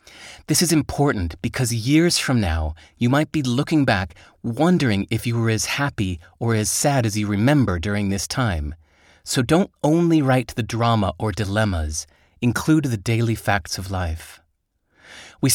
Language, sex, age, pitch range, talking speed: English, male, 30-49, 95-135 Hz, 160 wpm